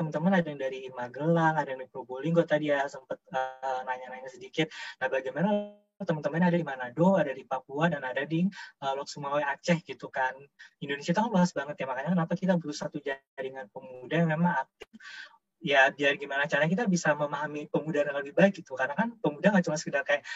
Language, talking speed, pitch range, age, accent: Indonesian, 190 wpm, 135-170 Hz, 20-39, native